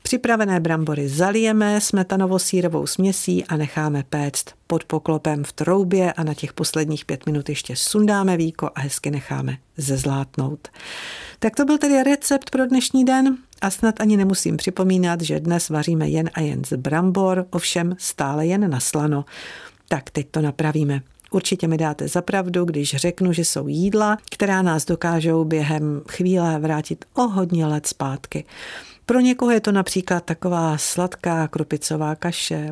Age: 50-69